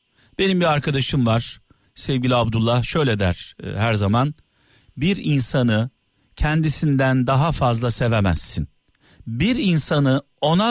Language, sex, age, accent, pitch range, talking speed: Turkish, male, 50-69, native, 120-170 Hz, 110 wpm